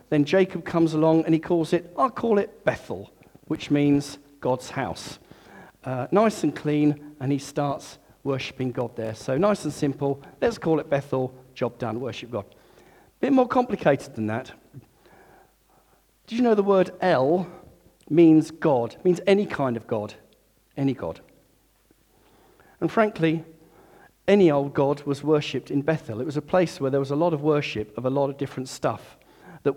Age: 50-69